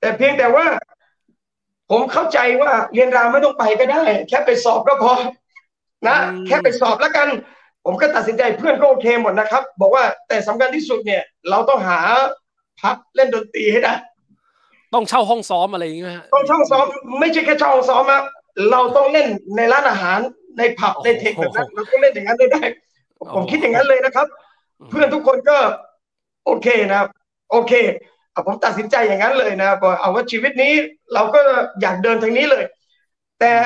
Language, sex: Thai, male